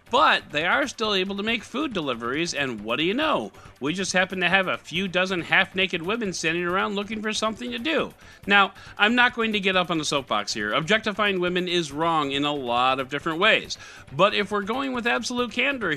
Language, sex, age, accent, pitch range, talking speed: English, male, 50-69, American, 140-215 Hz, 220 wpm